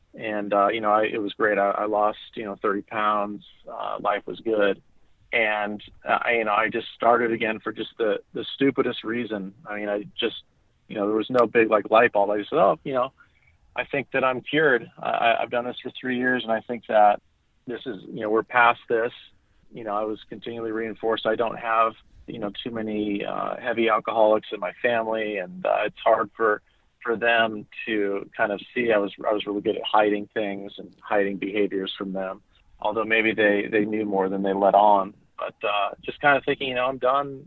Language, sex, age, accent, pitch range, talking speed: English, male, 40-59, American, 105-120 Hz, 225 wpm